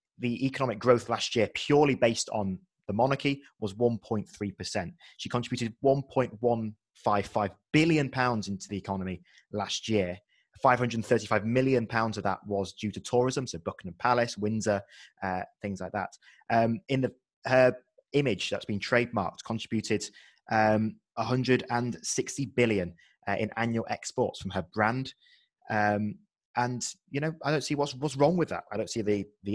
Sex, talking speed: male, 150 wpm